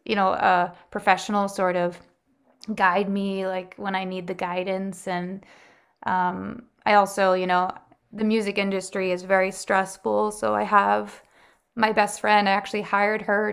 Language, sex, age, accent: English, female, 20-39, American